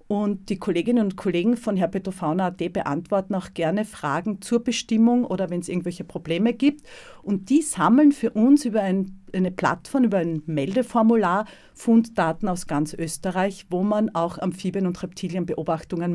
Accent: Austrian